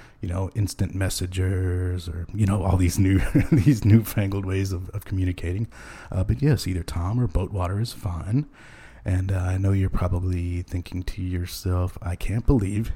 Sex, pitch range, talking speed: male, 90-110 Hz, 170 wpm